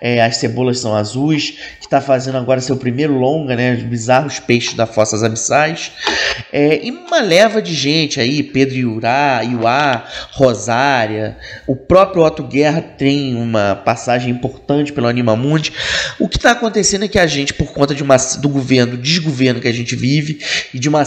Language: Portuguese